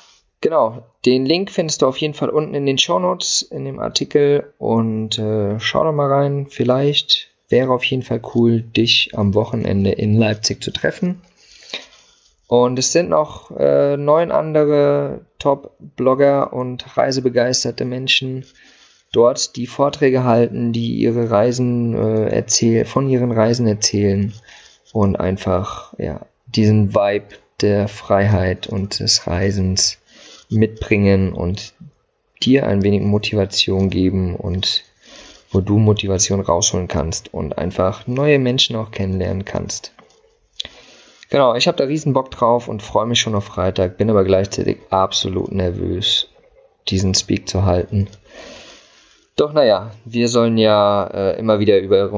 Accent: German